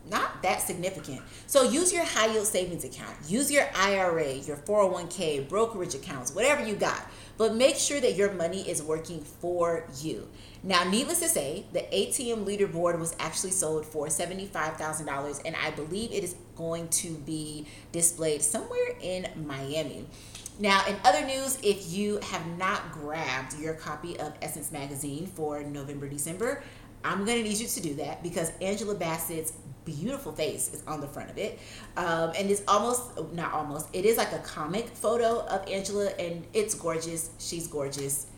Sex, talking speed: female, 170 wpm